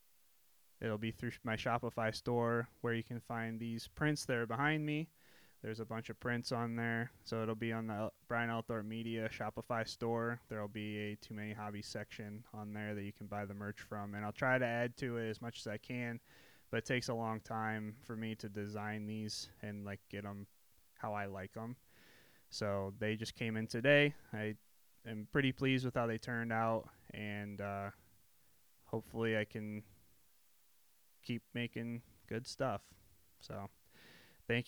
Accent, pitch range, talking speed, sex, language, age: American, 105-120 Hz, 185 wpm, male, English, 20-39